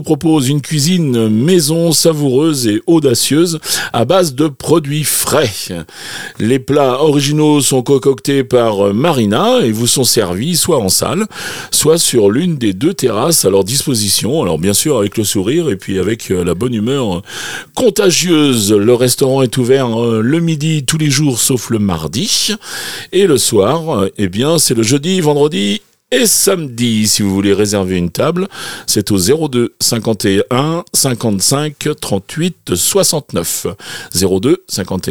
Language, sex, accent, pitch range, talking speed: English, male, French, 110-160 Hz, 150 wpm